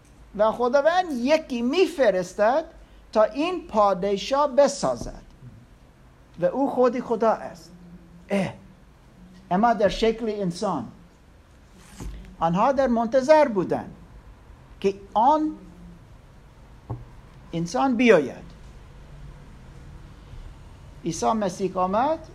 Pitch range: 170-255 Hz